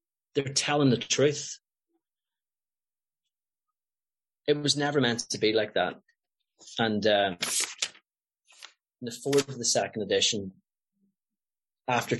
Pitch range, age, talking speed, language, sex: 95-145 Hz, 30-49, 110 wpm, English, male